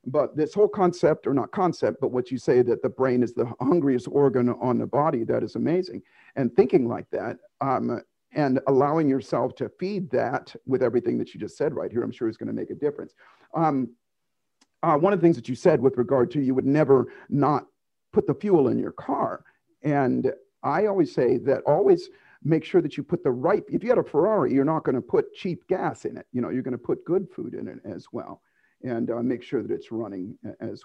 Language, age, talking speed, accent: English, 50-69, 235 wpm, American